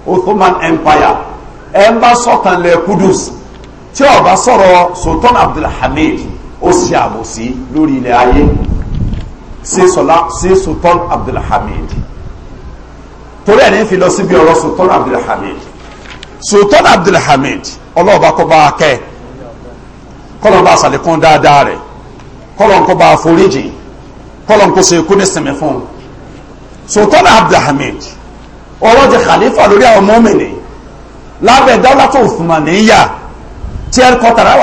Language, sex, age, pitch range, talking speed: Italian, male, 50-69, 160-225 Hz, 75 wpm